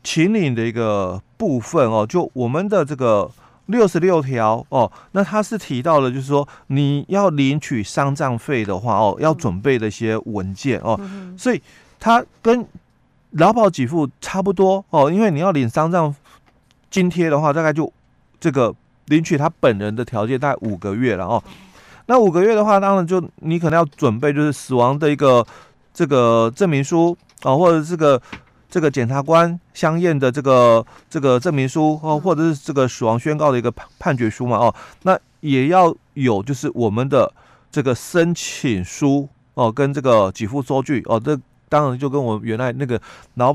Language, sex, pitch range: Chinese, male, 120-170 Hz